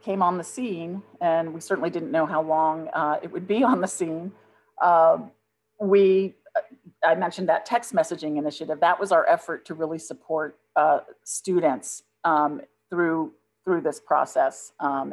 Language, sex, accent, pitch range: English, female, American, 160-200 Hz